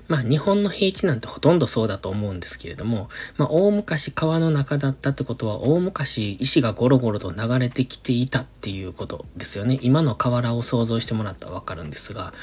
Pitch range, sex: 105-145 Hz, male